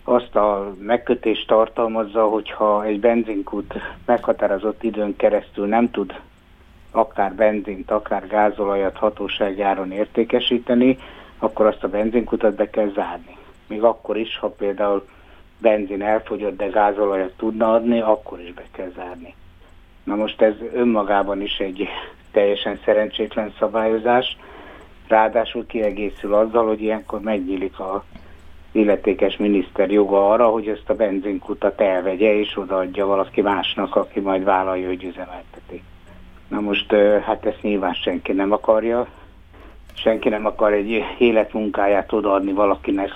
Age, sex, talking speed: 60-79, male, 125 wpm